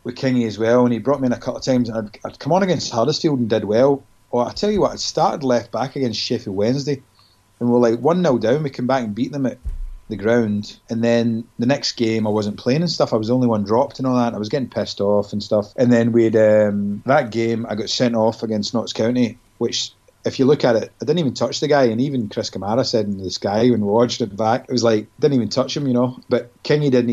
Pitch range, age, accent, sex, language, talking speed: 105-125 Hz, 30-49, British, male, English, 275 wpm